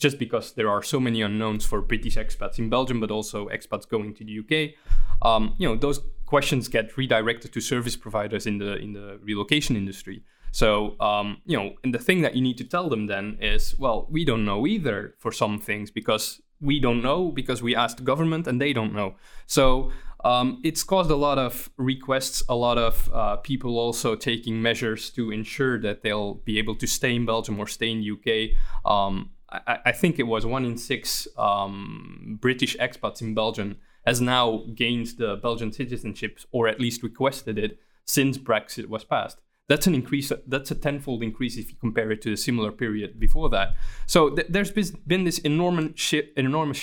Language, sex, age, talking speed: English, male, 20-39, 195 wpm